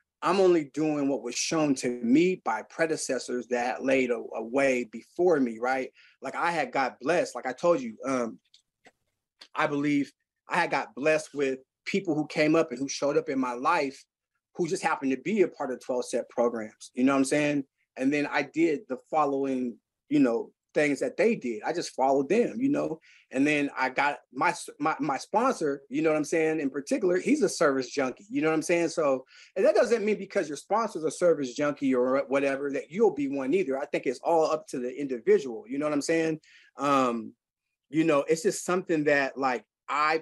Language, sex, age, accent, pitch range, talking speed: English, male, 30-49, American, 135-175 Hz, 210 wpm